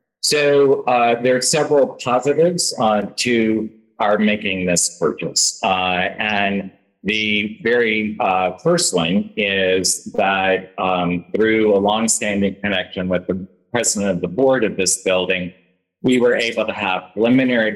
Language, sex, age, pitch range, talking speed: English, male, 40-59, 90-110 Hz, 140 wpm